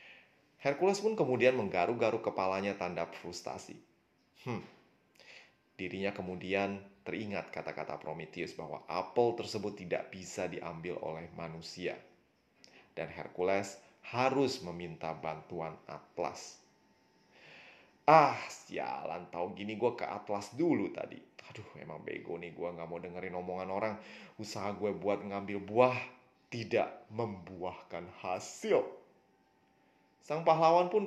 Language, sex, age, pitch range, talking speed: Indonesian, male, 30-49, 90-110 Hz, 110 wpm